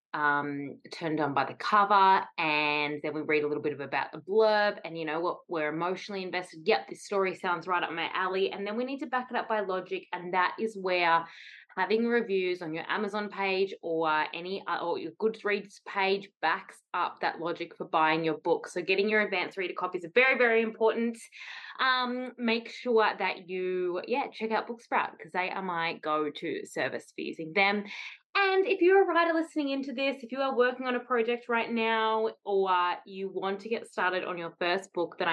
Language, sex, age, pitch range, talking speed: English, female, 20-39, 170-220 Hz, 205 wpm